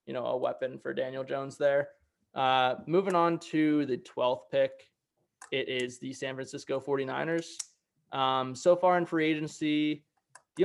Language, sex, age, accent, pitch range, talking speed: English, male, 20-39, American, 130-150 Hz, 160 wpm